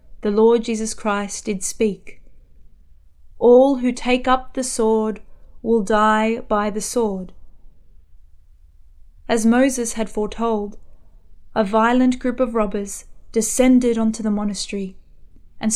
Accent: Australian